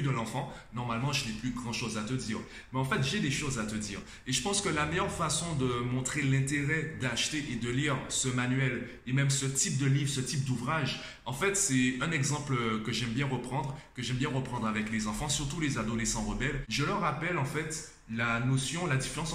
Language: French